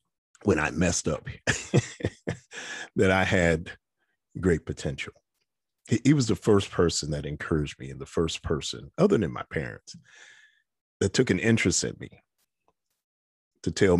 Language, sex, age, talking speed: English, male, 50-69, 145 wpm